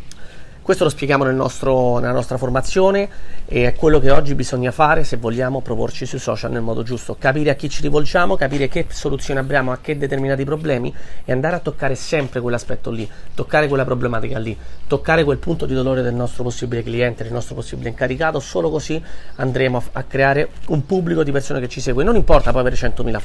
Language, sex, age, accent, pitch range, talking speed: Italian, male, 30-49, native, 125-155 Hz, 195 wpm